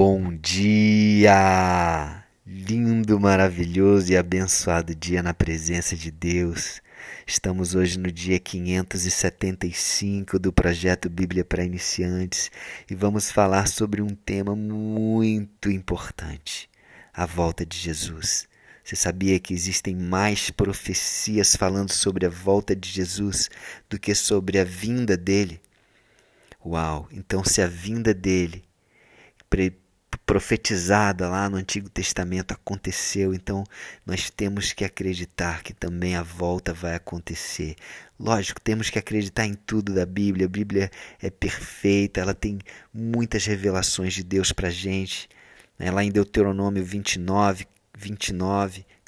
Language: Portuguese